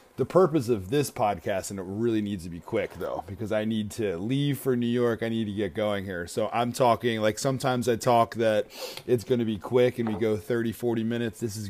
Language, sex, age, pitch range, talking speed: English, male, 30-49, 105-125 Hz, 245 wpm